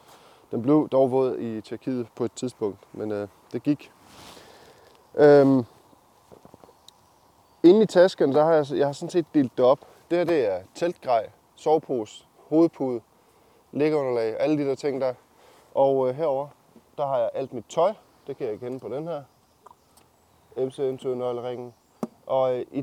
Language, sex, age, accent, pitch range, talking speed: Danish, male, 20-39, native, 115-150 Hz, 160 wpm